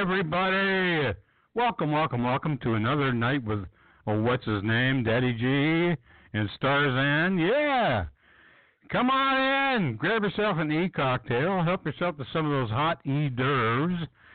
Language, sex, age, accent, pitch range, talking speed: English, male, 60-79, American, 105-150 Hz, 150 wpm